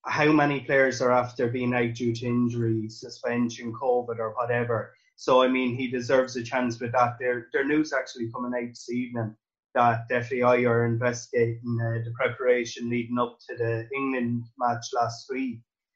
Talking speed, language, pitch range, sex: 175 wpm, English, 120-135 Hz, male